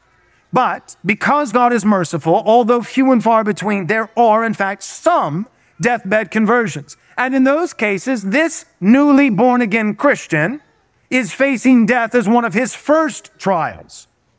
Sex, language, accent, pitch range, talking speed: male, English, American, 185-265 Hz, 140 wpm